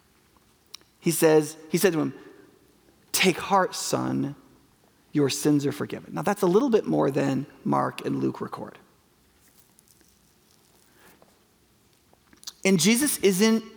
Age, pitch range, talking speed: 30-49, 180-245 Hz, 120 wpm